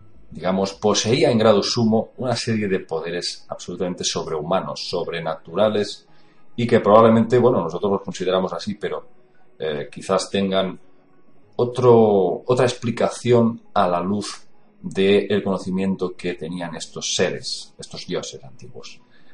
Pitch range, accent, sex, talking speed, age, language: 90-115 Hz, Spanish, male, 120 wpm, 40-59, Spanish